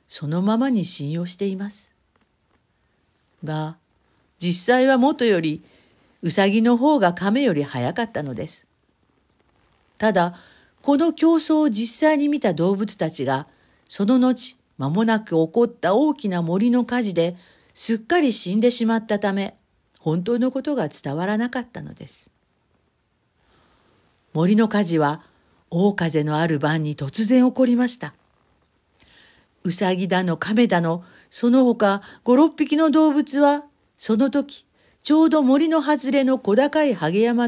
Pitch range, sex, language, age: 165-255 Hz, female, Japanese, 50-69